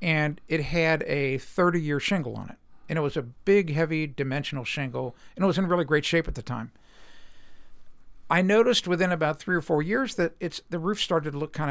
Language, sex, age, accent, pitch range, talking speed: English, male, 60-79, American, 140-180 Hz, 215 wpm